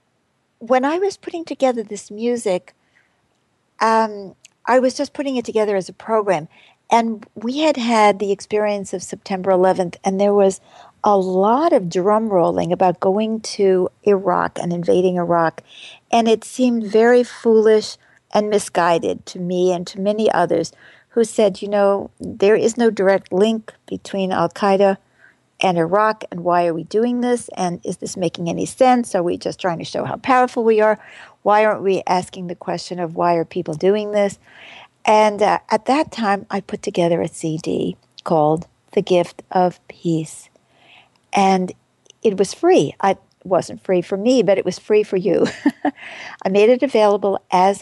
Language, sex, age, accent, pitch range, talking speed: English, female, 60-79, American, 185-225 Hz, 170 wpm